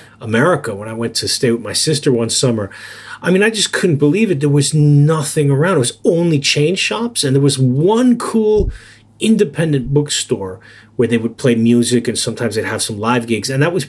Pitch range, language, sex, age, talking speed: 115-165 Hz, English, male, 30-49, 210 wpm